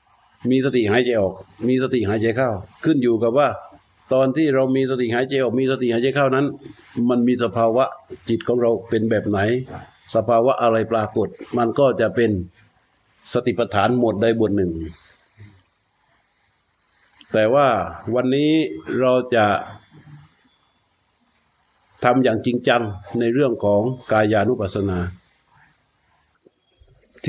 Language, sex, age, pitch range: Thai, male, 60-79, 105-135 Hz